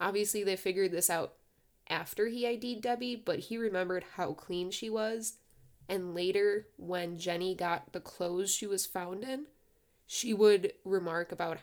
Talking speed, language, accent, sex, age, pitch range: 160 wpm, English, American, female, 10-29, 175-220 Hz